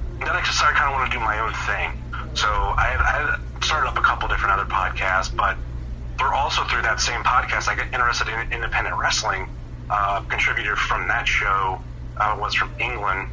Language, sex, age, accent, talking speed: English, male, 30-49, American, 200 wpm